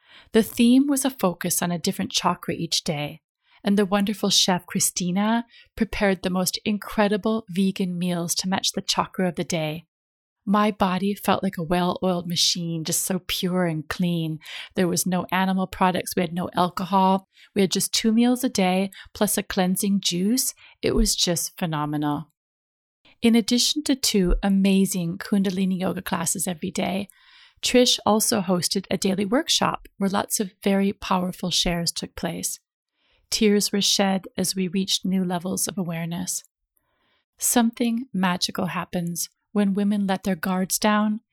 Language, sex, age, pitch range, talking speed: English, female, 30-49, 180-210 Hz, 155 wpm